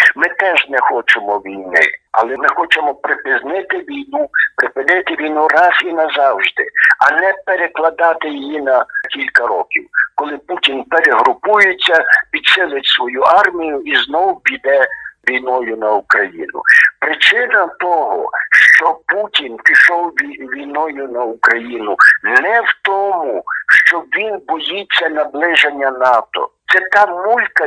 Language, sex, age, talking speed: Czech, male, 60-79, 115 wpm